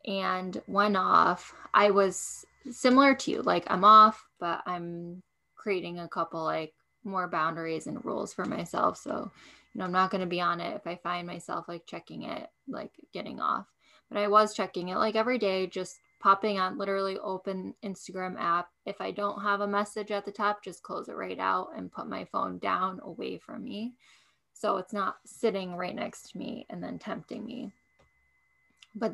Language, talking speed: English, 190 wpm